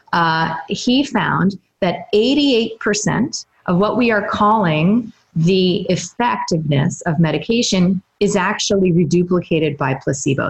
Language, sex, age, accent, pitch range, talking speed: English, female, 30-49, American, 170-220 Hz, 110 wpm